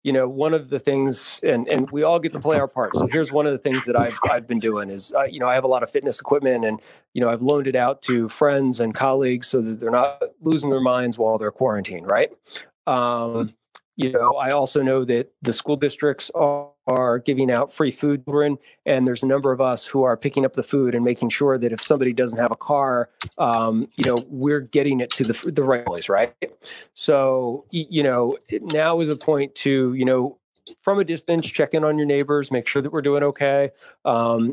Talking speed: 235 wpm